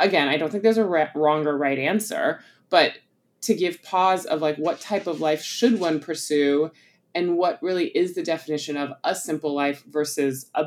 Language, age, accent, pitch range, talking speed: English, 20-39, American, 145-170 Hz, 195 wpm